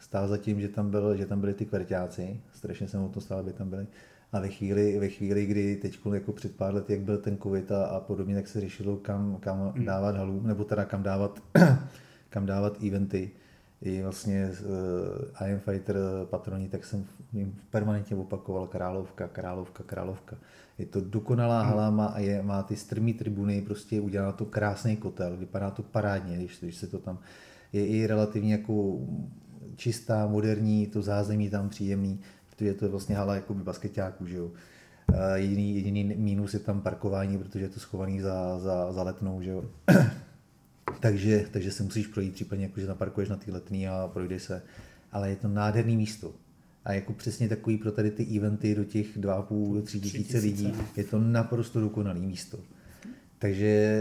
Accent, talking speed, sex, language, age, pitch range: native, 170 wpm, male, Czech, 30-49, 95-105 Hz